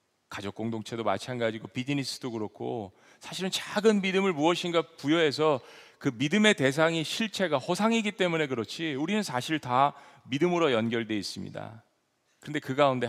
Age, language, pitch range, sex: 40-59, Korean, 110-150 Hz, male